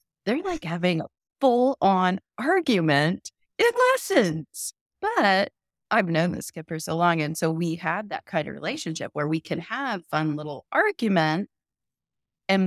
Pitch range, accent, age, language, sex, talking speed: 150-210 Hz, American, 30-49, English, female, 155 wpm